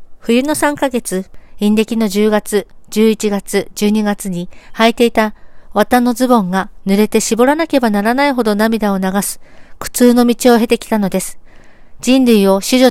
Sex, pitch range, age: female, 205-255 Hz, 50-69